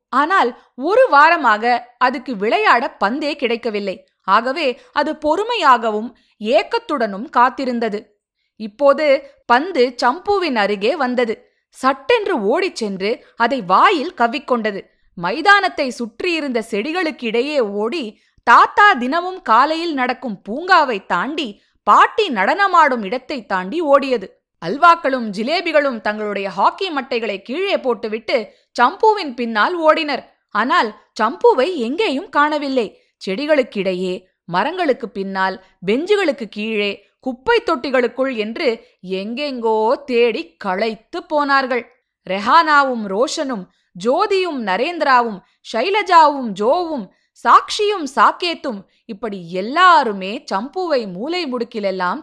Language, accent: Tamil, native